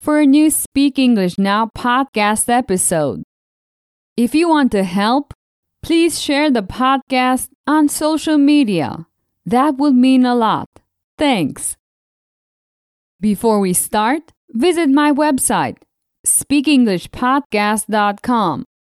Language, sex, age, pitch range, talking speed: English, female, 20-39, 205-285 Hz, 105 wpm